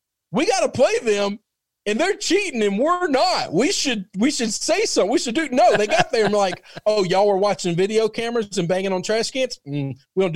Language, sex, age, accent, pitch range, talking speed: English, male, 40-59, American, 145-195 Hz, 225 wpm